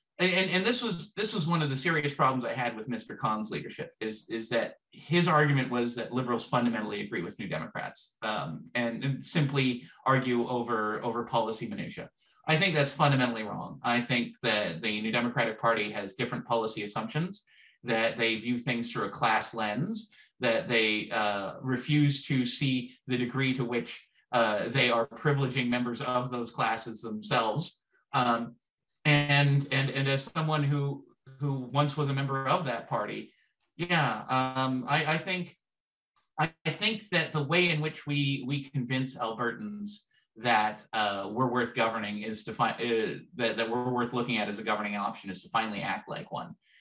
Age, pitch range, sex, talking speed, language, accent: 30-49, 115-145 Hz, male, 180 wpm, English, American